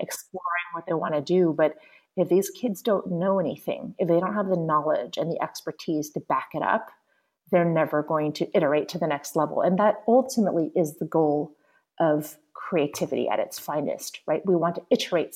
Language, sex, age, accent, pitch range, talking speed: English, female, 30-49, American, 155-195 Hz, 200 wpm